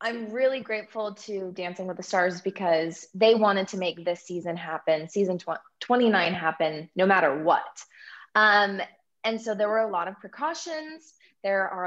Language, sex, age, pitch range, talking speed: English, female, 20-39, 180-225 Hz, 165 wpm